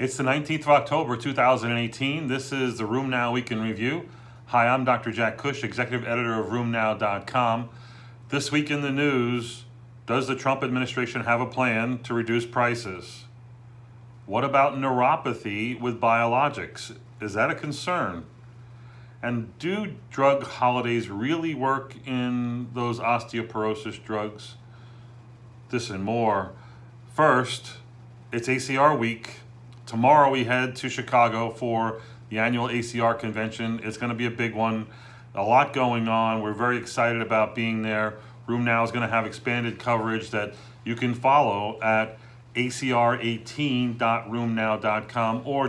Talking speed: 140 wpm